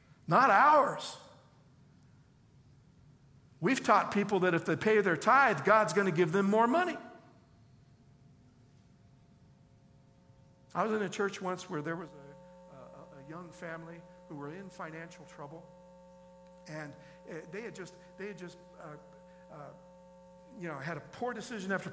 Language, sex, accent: English, male, American